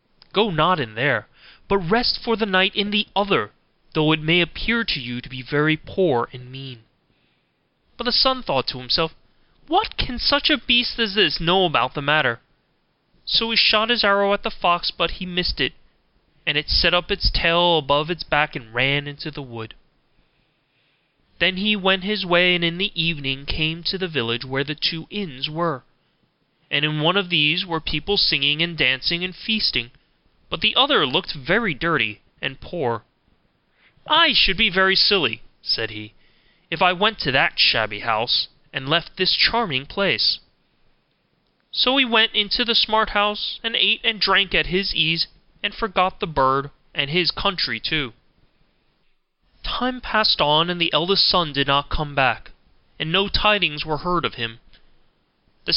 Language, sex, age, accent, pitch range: Korean, male, 30-49, American, 140-205 Hz